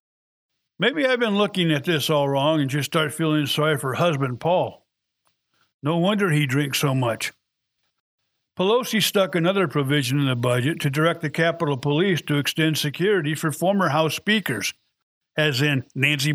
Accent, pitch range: American, 150-185 Hz